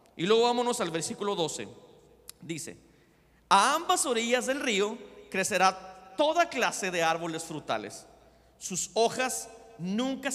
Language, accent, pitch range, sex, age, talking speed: Spanish, Mexican, 155-215 Hz, male, 40-59, 120 wpm